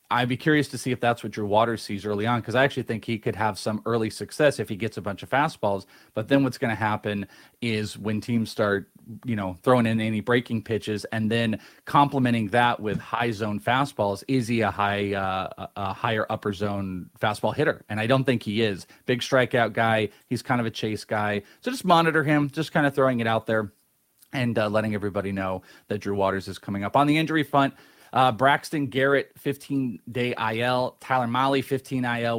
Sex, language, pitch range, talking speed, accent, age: male, English, 105-135 Hz, 215 wpm, American, 30-49